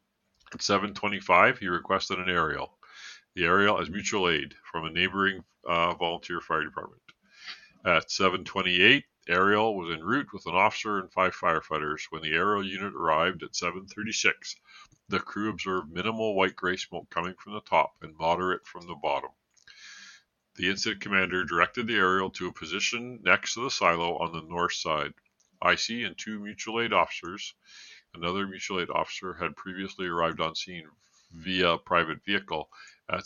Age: 50-69